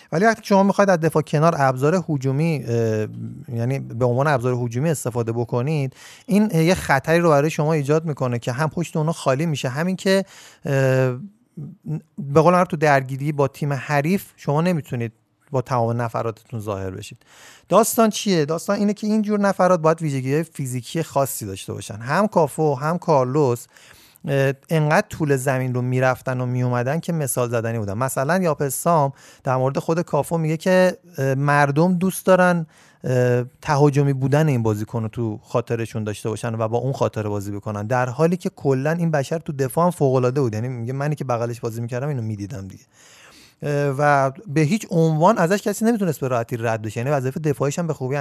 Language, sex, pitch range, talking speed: Persian, male, 130-170 Hz, 175 wpm